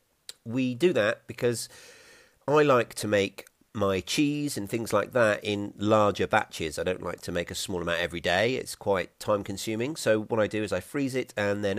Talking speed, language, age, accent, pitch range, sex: 210 wpm, English, 40-59, British, 90-115 Hz, male